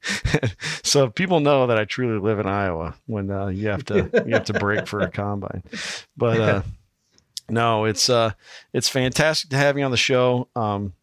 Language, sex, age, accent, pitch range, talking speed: English, male, 50-69, American, 100-125 Hz, 190 wpm